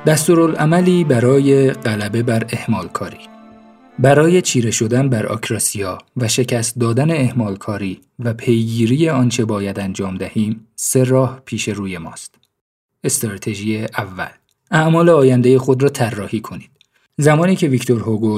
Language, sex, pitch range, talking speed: Persian, male, 110-130 Hz, 125 wpm